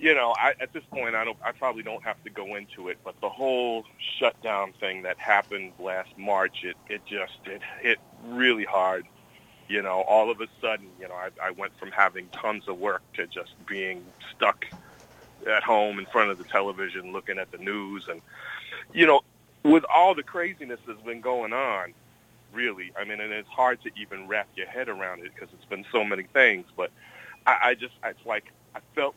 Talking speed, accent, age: 210 wpm, American, 40-59